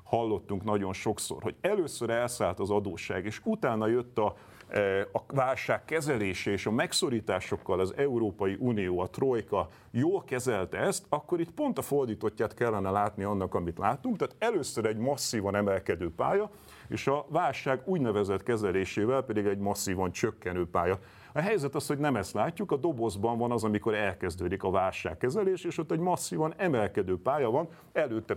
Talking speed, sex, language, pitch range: 160 wpm, male, Hungarian, 100-135 Hz